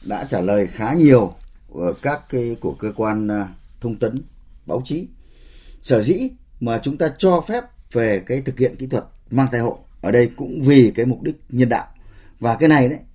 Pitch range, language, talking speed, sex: 110-155 Hz, Vietnamese, 195 wpm, male